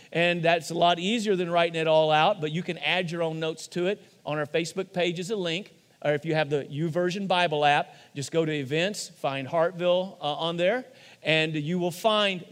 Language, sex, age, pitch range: English, male, 40-59, 155-190 Hz